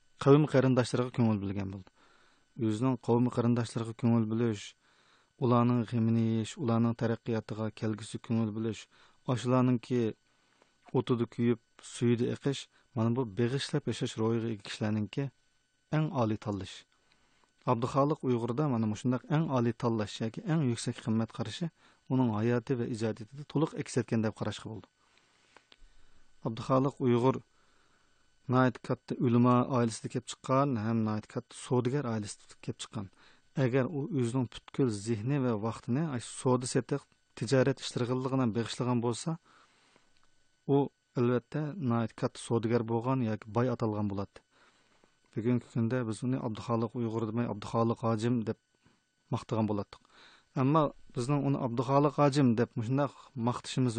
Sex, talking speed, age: male, 80 wpm, 40-59